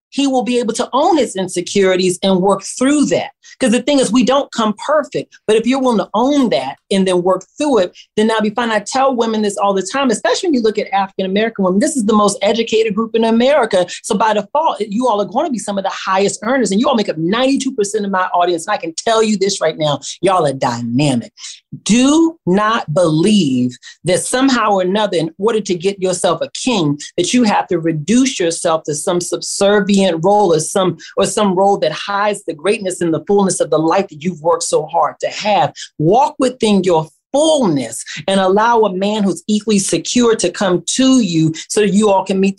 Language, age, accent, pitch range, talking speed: English, 40-59, American, 185-250 Hz, 225 wpm